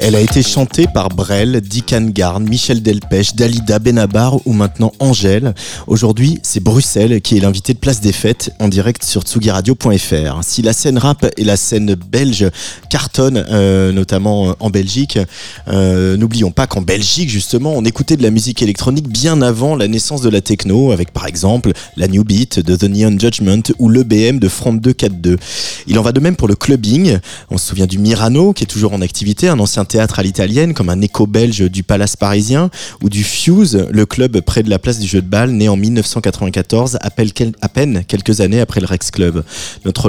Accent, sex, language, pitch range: French, male, French, 100-125 Hz